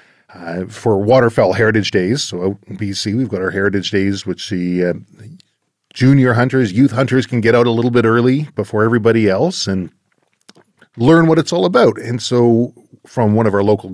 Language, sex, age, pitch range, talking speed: English, male, 40-59, 95-115 Hz, 190 wpm